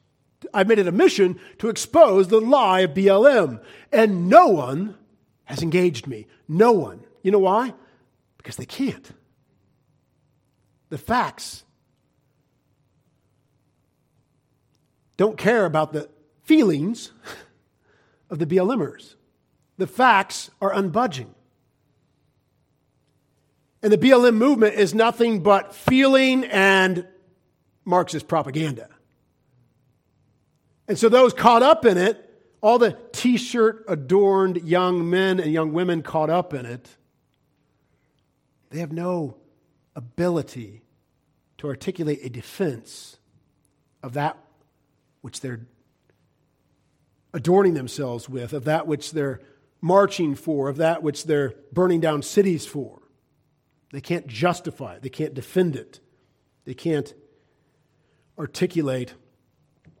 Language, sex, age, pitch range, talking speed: English, male, 50-69, 140-190 Hz, 110 wpm